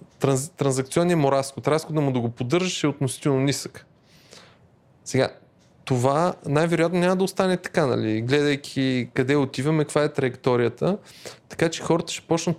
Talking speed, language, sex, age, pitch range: 145 wpm, Bulgarian, male, 20-39, 140-175 Hz